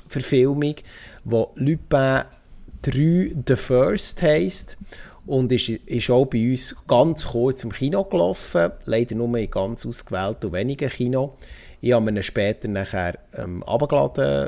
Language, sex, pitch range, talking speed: German, male, 110-135 Hz, 135 wpm